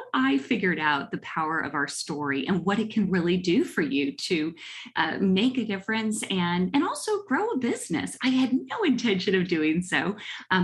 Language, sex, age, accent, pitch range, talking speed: English, female, 30-49, American, 165-220 Hz, 195 wpm